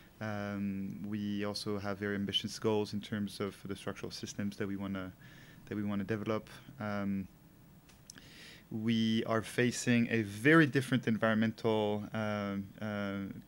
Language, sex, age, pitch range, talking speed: English, male, 20-39, 100-120 Hz, 140 wpm